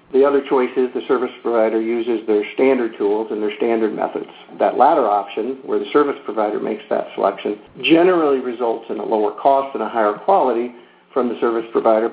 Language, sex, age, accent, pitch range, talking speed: English, male, 50-69, American, 115-145 Hz, 195 wpm